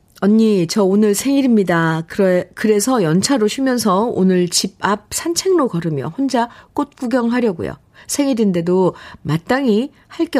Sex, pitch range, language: female, 175-255 Hz, Korean